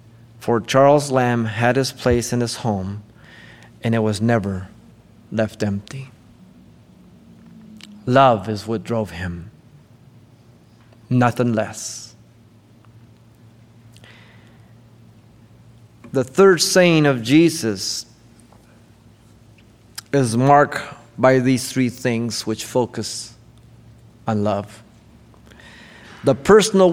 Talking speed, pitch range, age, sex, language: 85 wpm, 115-135 Hz, 30-49, male, English